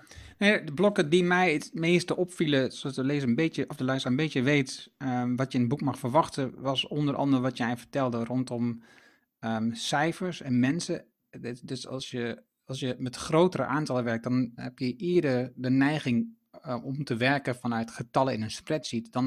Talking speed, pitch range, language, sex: 185 wpm, 120-145 Hz, Dutch, male